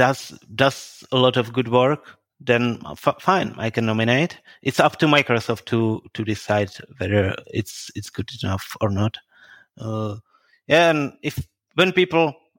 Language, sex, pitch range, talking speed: English, male, 110-135 Hz, 155 wpm